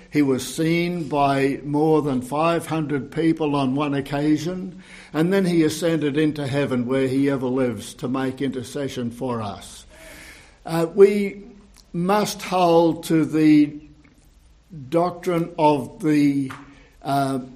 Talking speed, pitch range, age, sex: 125 wpm, 135-165 Hz, 60-79, male